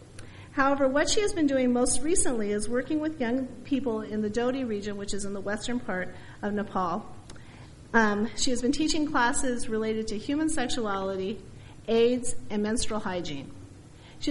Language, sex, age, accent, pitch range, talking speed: English, female, 40-59, American, 175-260 Hz, 170 wpm